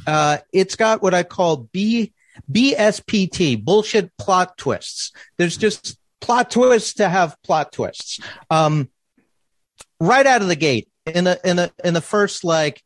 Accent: American